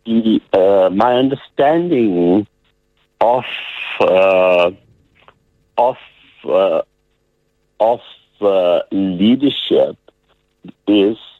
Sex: male